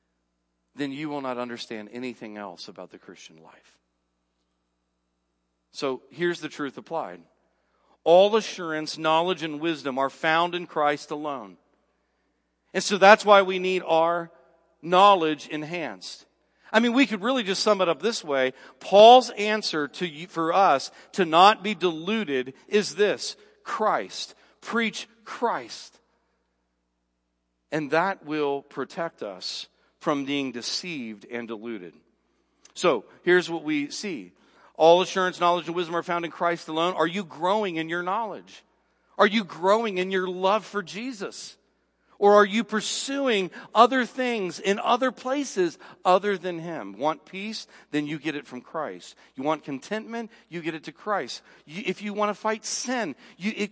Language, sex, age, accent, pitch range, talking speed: English, male, 40-59, American, 125-205 Hz, 150 wpm